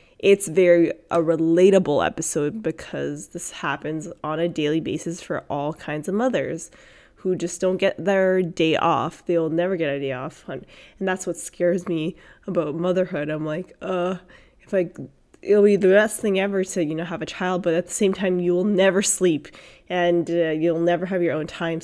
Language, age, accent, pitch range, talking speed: English, 20-39, American, 165-190 Hz, 200 wpm